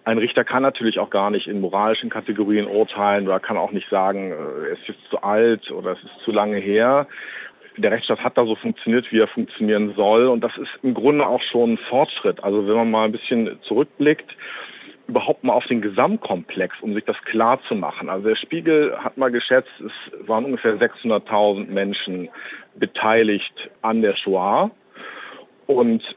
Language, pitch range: German, 110-135 Hz